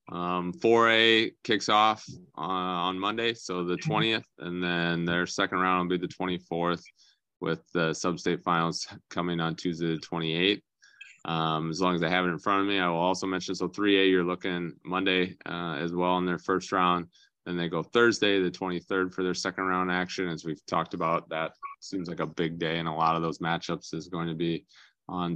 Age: 20-39